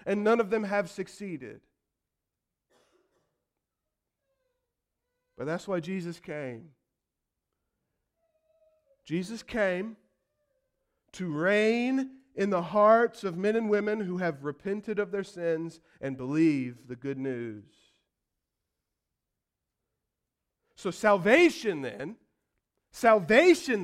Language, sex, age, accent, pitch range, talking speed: English, male, 40-59, American, 190-280 Hz, 95 wpm